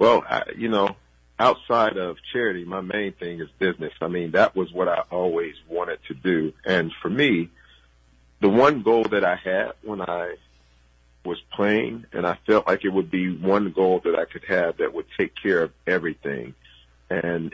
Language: English